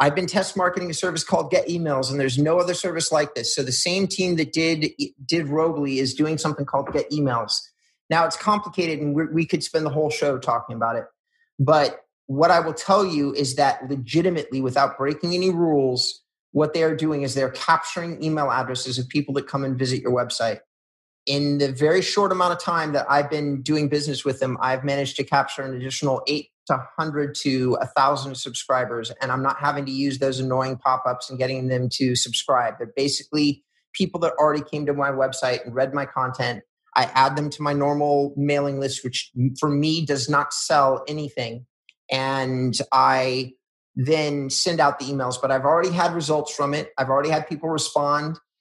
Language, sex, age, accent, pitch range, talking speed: English, male, 30-49, American, 130-160 Hz, 200 wpm